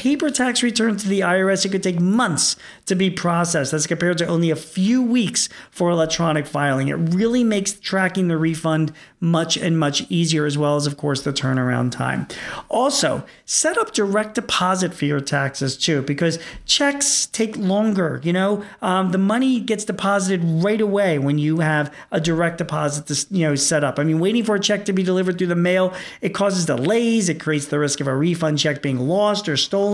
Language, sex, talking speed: English, male, 200 wpm